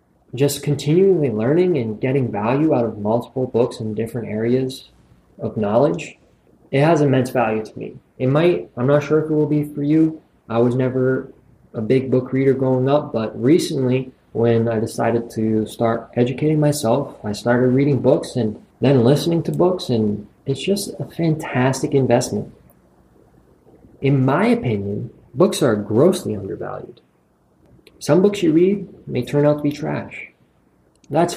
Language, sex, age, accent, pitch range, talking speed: English, male, 20-39, American, 120-155 Hz, 160 wpm